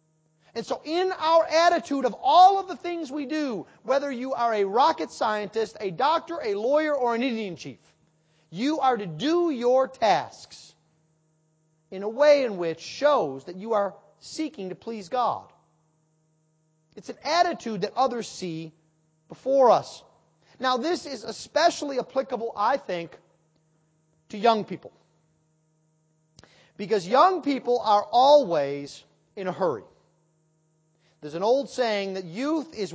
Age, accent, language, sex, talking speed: 40-59, American, English, male, 140 wpm